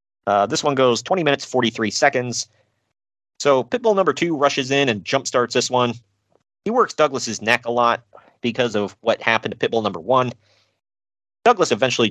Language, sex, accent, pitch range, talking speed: English, male, American, 110-140 Hz, 175 wpm